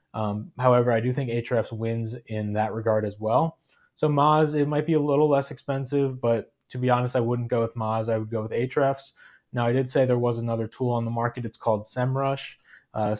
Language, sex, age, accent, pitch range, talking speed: English, male, 20-39, American, 115-140 Hz, 225 wpm